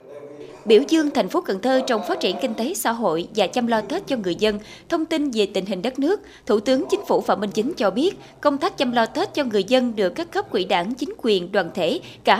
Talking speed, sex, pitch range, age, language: 260 wpm, female, 200-295 Hz, 20-39, Vietnamese